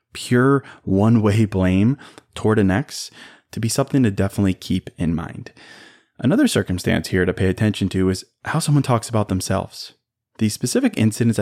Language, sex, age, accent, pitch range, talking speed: English, male, 20-39, American, 95-125 Hz, 160 wpm